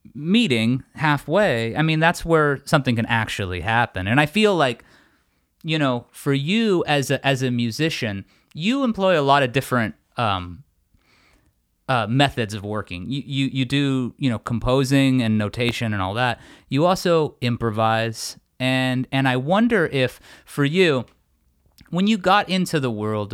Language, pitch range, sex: English, 115-155 Hz, male